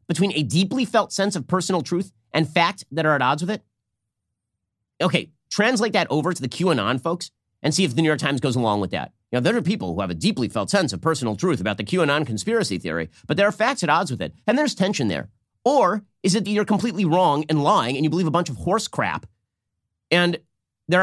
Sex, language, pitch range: male, English, 115-190 Hz